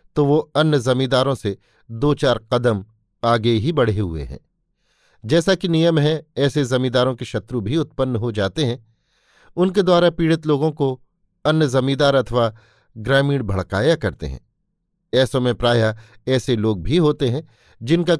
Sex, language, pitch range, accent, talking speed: male, Hindi, 110-150 Hz, native, 155 wpm